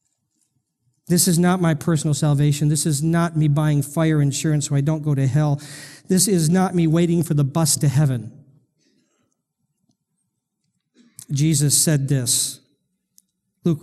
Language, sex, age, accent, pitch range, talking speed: English, male, 40-59, American, 145-180 Hz, 145 wpm